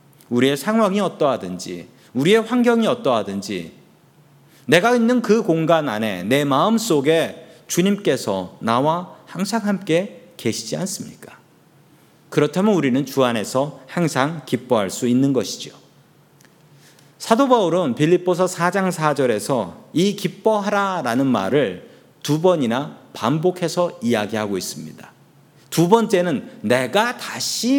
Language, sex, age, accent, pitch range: Korean, male, 40-59, native, 135-215 Hz